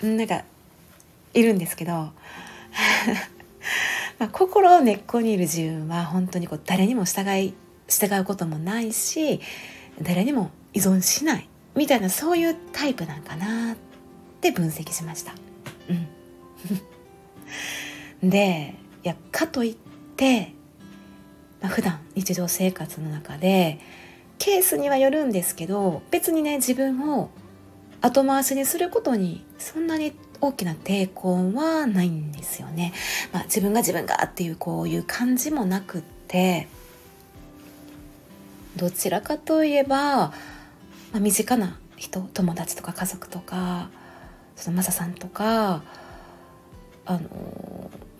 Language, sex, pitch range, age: Japanese, female, 170-270 Hz, 40-59